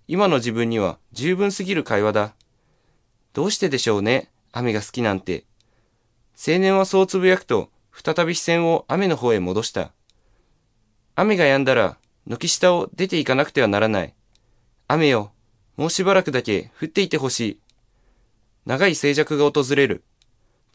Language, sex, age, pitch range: Chinese, male, 20-39, 110-165 Hz